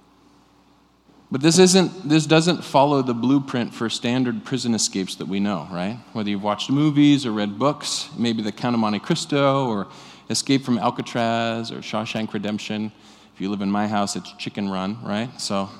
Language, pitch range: English, 105-140 Hz